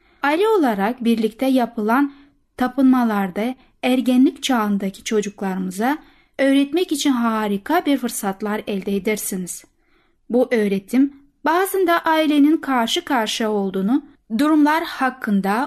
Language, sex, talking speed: Turkish, female, 90 wpm